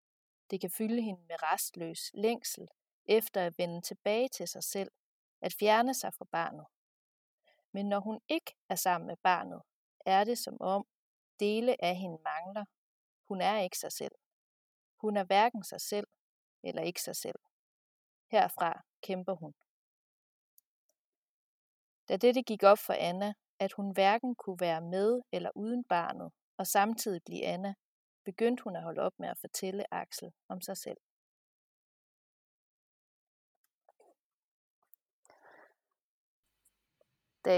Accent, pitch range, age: native, 185-215 Hz, 40-59